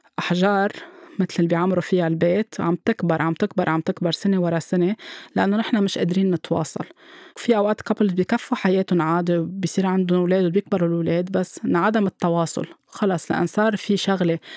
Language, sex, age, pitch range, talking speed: Arabic, female, 20-39, 175-205 Hz, 160 wpm